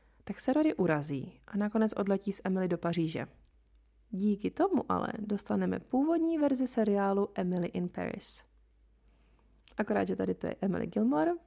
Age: 20-39